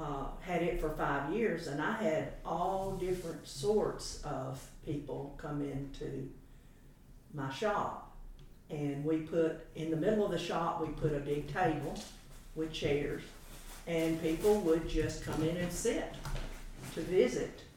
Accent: American